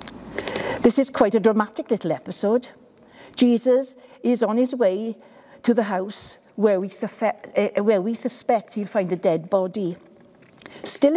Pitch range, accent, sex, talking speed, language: 195-240 Hz, British, female, 135 wpm, English